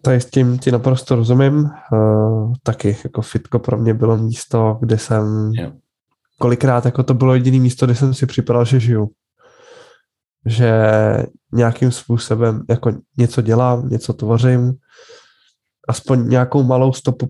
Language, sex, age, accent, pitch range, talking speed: Czech, male, 10-29, native, 115-130 Hz, 140 wpm